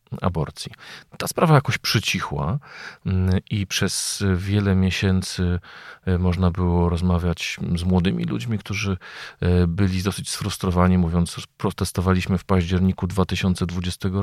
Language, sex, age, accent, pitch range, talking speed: Polish, male, 40-59, native, 85-100 Hz, 100 wpm